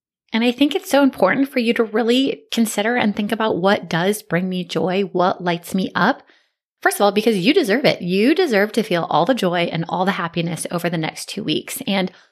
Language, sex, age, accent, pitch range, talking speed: English, female, 20-39, American, 170-220 Hz, 230 wpm